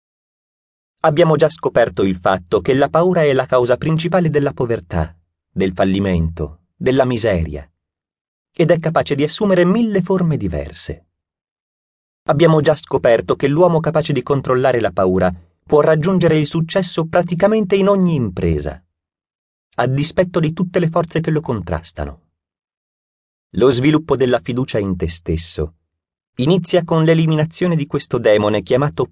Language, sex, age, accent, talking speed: Italian, male, 30-49, native, 140 wpm